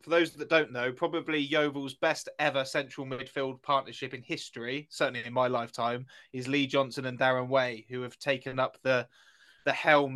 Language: English